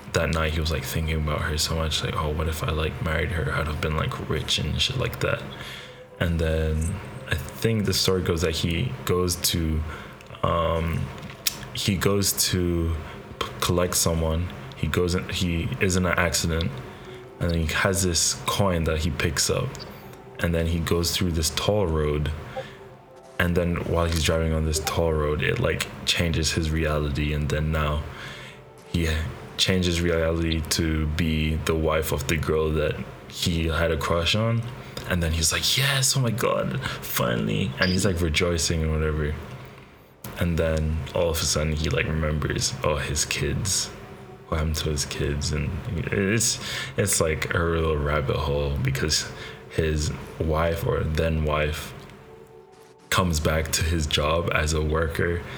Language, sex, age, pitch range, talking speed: English, male, 20-39, 75-85 Hz, 165 wpm